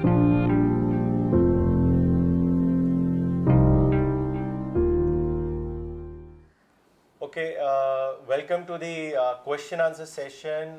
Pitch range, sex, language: 130-175 Hz, male, Urdu